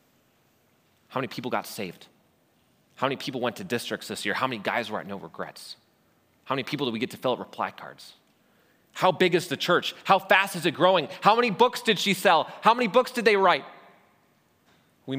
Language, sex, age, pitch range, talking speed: English, male, 30-49, 140-195 Hz, 215 wpm